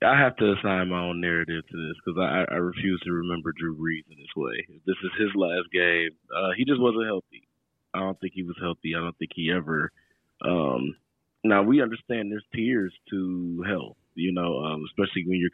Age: 20-39